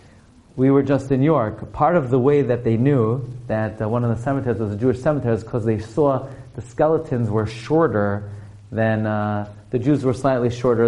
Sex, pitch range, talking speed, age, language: male, 115-145 Hz, 205 wpm, 30-49, English